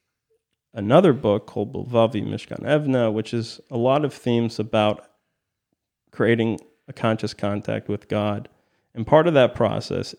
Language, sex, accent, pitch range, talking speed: English, male, American, 110-130 Hz, 140 wpm